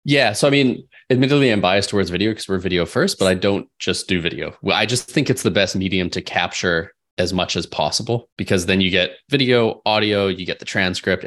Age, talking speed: 20-39, 225 wpm